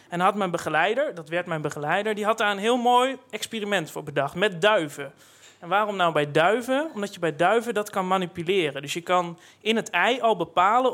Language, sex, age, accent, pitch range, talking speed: Dutch, male, 30-49, Dutch, 170-225 Hz, 215 wpm